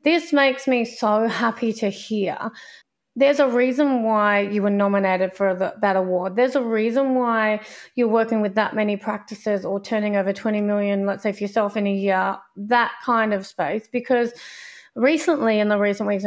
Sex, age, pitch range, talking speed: female, 30-49, 205-250 Hz, 180 wpm